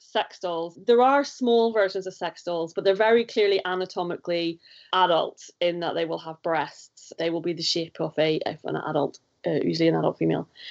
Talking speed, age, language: 200 wpm, 30-49, English